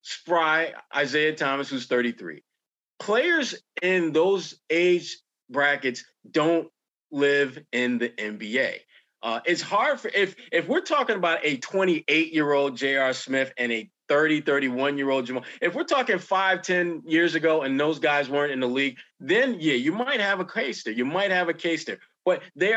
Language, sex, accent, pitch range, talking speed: English, male, American, 140-190 Hz, 165 wpm